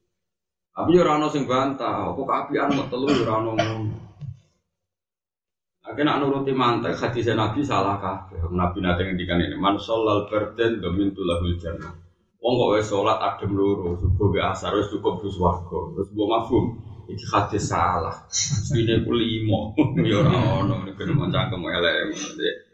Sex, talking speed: male, 80 wpm